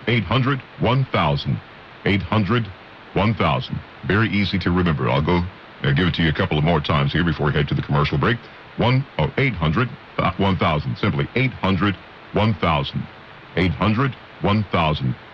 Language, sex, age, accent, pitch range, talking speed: English, male, 50-69, American, 85-110 Hz, 105 wpm